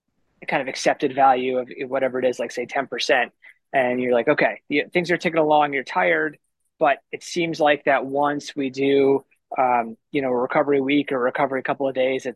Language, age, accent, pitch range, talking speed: English, 20-39, American, 130-150 Hz, 210 wpm